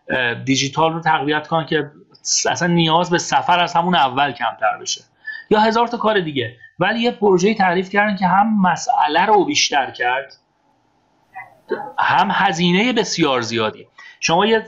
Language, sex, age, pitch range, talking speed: Persian, male, 30-49, 140-205 Hz, 145 wpm